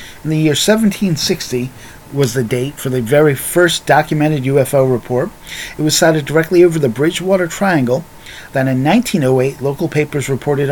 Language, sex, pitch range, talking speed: English, male, 125-155 Hz, 155 wpm